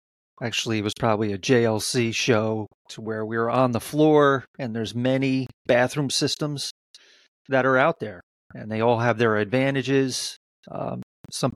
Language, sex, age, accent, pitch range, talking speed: English, male, 30-49, American, 110-130 Hz, 155 wpm